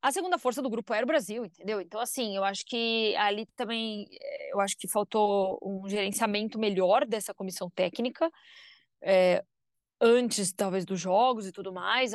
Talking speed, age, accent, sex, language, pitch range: 170 wpm, 20-39, Brazilian, female, Portuguese, 200-270 Hz